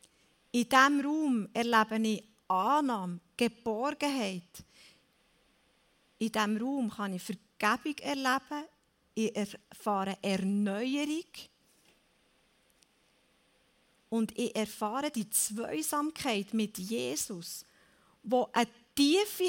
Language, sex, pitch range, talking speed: German, female, 215-280 Hz, 85 wpm